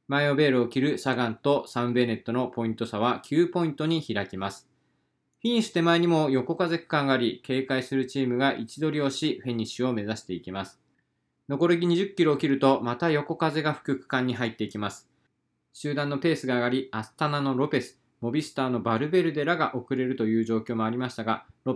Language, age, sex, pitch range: Japanese, 20-39, male, 120-155 Hz